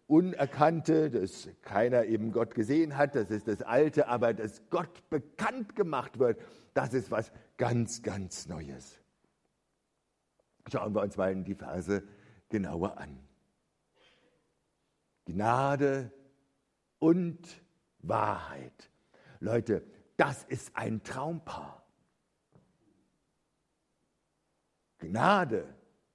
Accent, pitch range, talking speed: German, 125-185 Hz, 95 wpm